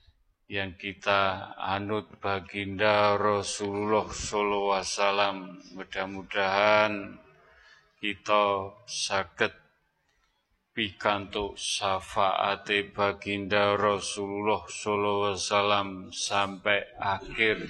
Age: 30-49